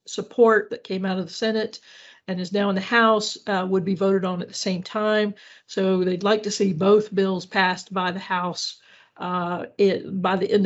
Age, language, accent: 50-69, English, American